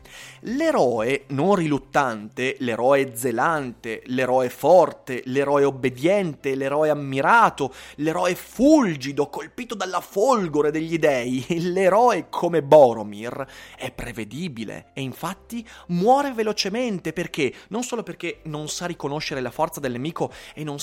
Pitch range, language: 130-200 Hz, Italian